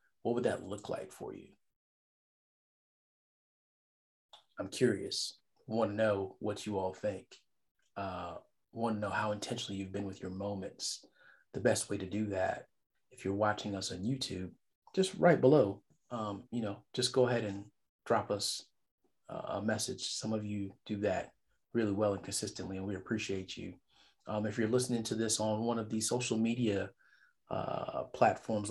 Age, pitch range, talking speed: 30-49, 100-120 Hz, 170 wpm